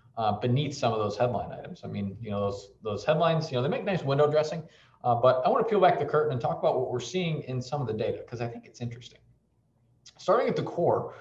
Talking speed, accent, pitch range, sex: 270 wpm, American, 115-145 Hz, male